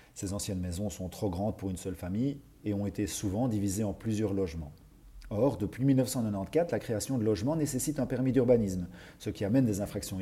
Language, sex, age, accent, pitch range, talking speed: French, male, 40-59, French, 95-130 Hz, 200 wpm